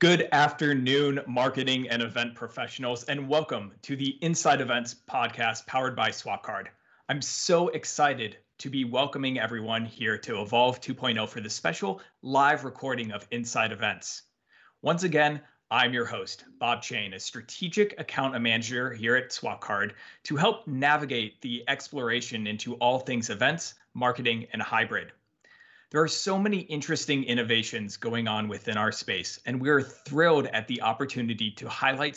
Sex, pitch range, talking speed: male, 115-145 Hz, 150 wpm